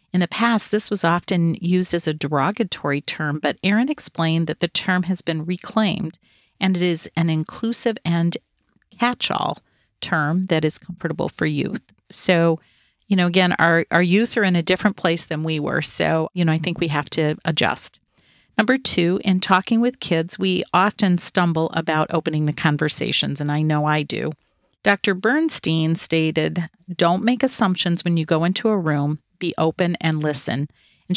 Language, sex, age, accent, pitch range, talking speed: English, female, 40-59, American, 160-200 Hz, 175 wpm